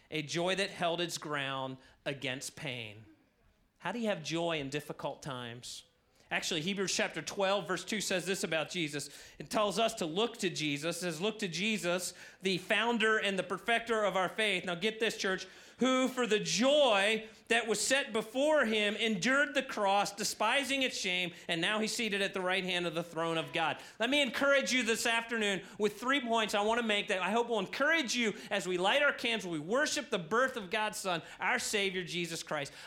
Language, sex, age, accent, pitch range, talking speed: English, male, 40-59, American, 180-235 Hz, 205 wpm